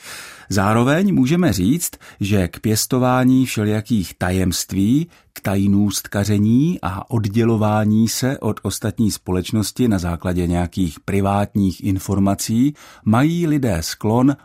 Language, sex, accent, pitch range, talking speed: Czech, male, native, 95-125 Hz, 105 wpm